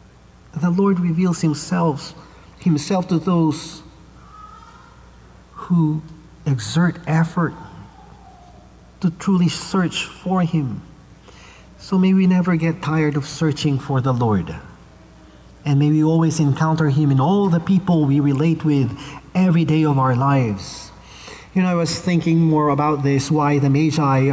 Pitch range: 140-170 Hz